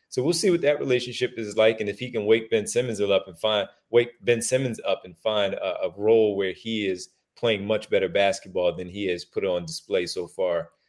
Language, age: English, 30-49